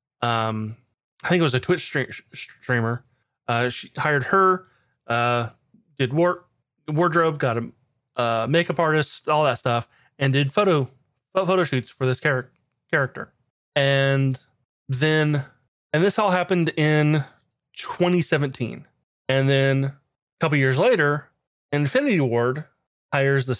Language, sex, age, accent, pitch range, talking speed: English, male, 30-49, American, 130-175 Hz, 130 wpm